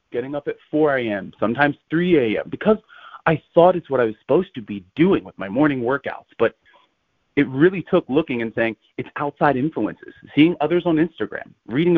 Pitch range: 115-175 Hz